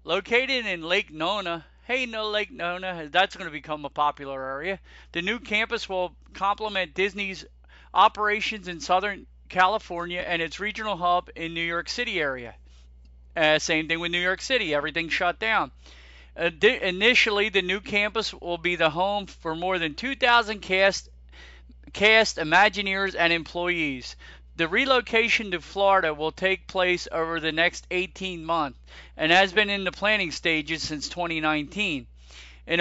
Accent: American